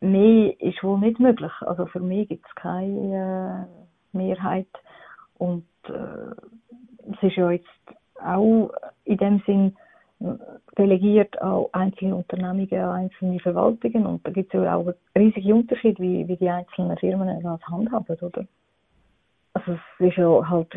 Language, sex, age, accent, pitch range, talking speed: German, female, 30-49, Swiss, 180-205 Hz, 145 wpm